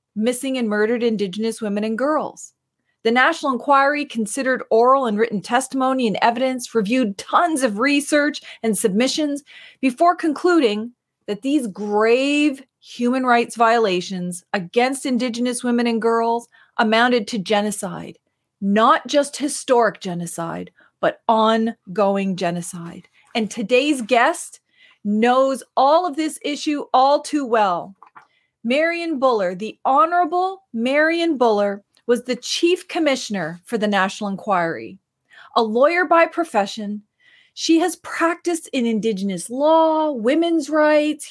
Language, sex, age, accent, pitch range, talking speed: English, female, 40-59, American, 225-310 Hz, 120 wpm